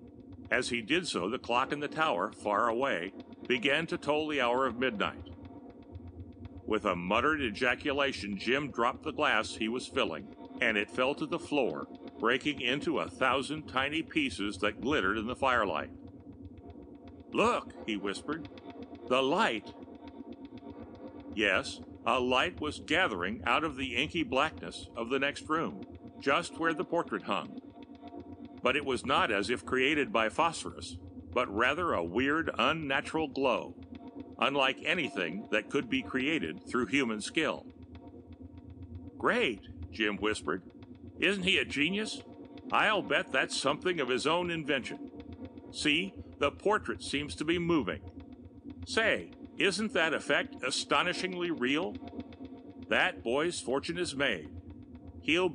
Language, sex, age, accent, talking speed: English, male, 60-79, American, 140 wpm